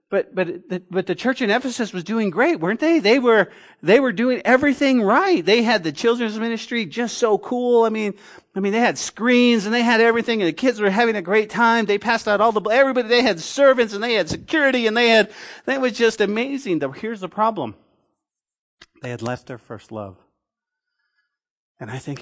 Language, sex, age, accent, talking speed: English, male, 40-59, American, 210 wpm